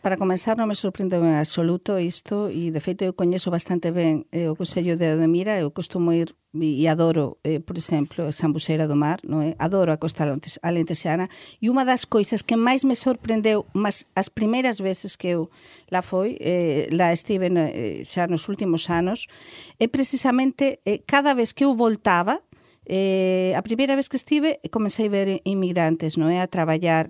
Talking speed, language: 185 wpm, Portuguese